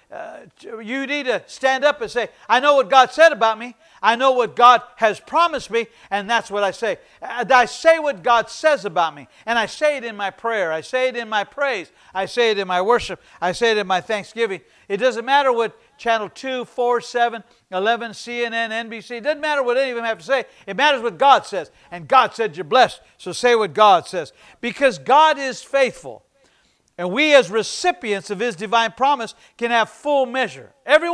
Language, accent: English, American